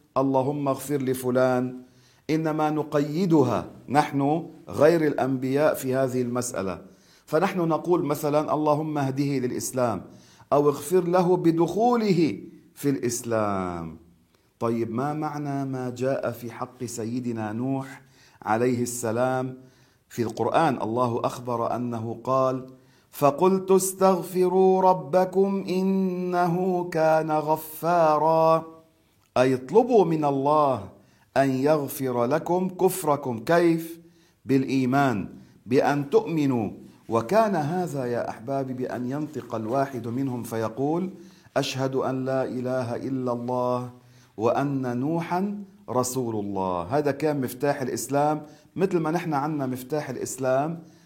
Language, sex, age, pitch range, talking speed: Arabic, male, 40-59, 125-160 Hz, 100 wpm